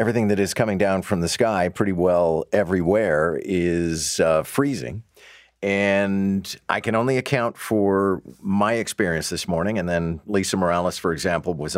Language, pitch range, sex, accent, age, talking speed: English, 80-100 Hz, male, American, 50-69, 160 wpm